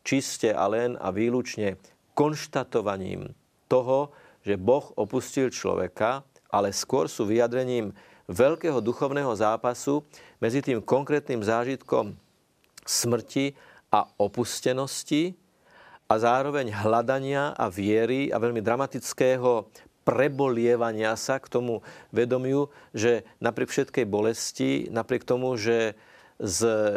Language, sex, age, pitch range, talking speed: Slovak, male, 50-69, 115-130 Hz, 100 wpm